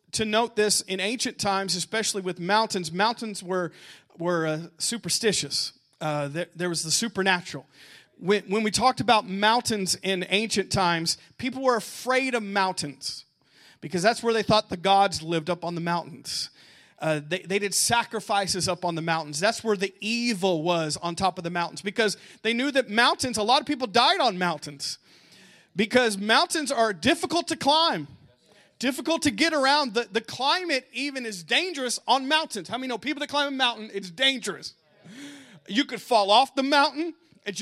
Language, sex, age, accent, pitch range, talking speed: English, male, 40-59, American, 195-265 Hz, 180 wpm